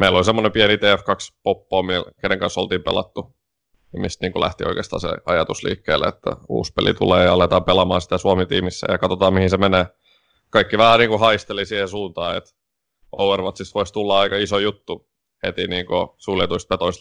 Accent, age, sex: native, 30-49, male